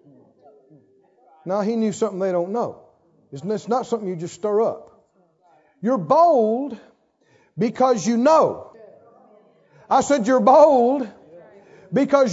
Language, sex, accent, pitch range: English, male, American, 220-300 Hz